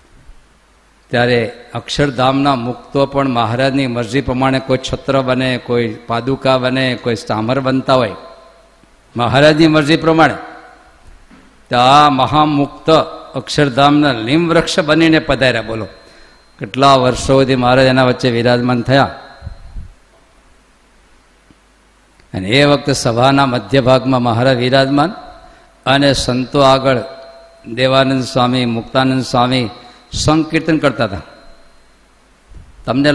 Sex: male